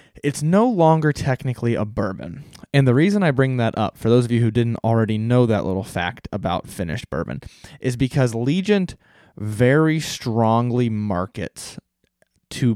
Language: English